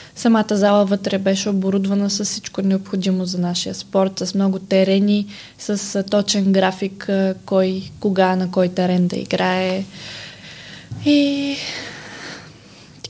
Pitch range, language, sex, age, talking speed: 195-225 Hz, Bulgarian, female, 20-39, 120 wpm